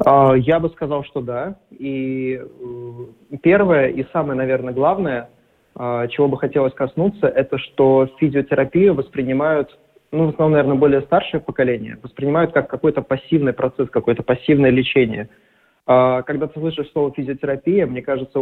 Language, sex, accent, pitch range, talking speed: Russian, male, native, 130-155 Hz, 135 wpm